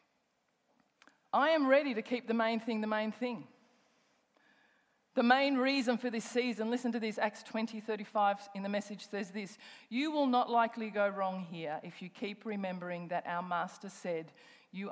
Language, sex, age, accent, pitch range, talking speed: English, female, 40-59, Australian, 195-245 Hz, 180 wpm